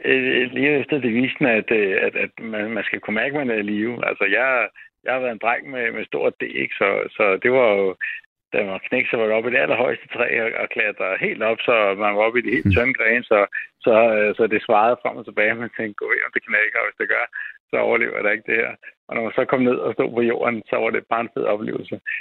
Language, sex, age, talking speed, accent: Danish, male, 60-79, 260 wpm, native